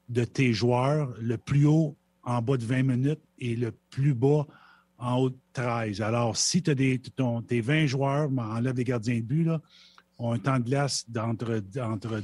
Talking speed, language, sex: 195 wpm, French, male